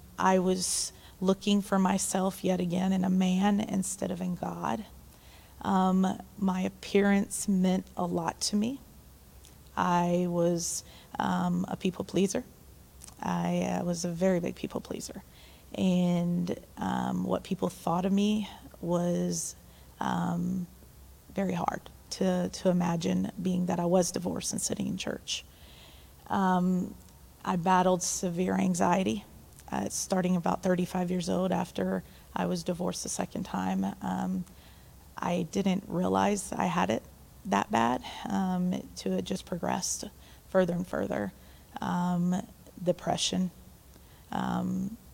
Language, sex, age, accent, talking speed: English, female, 30-49, American, 130 wpm